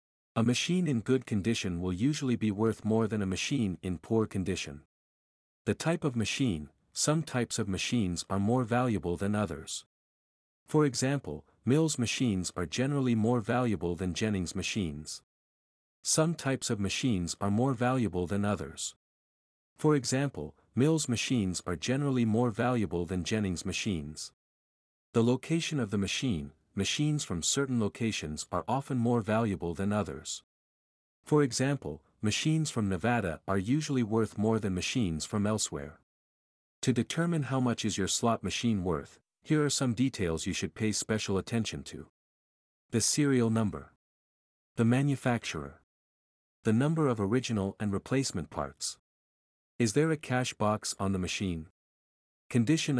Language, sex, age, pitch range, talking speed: English, male, 50-69, 85-125 Hz, 145 wpm